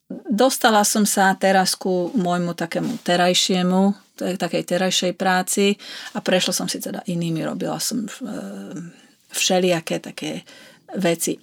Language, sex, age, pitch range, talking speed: Slovak, female, 30-49, 160-190 Hz, 115 wpm